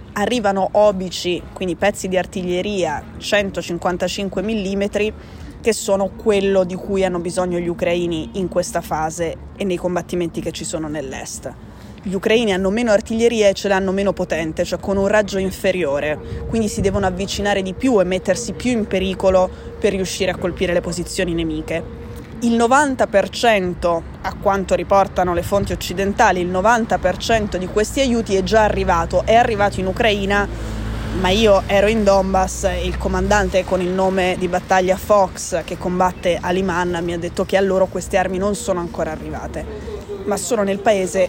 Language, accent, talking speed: Italian, native, 165 wpm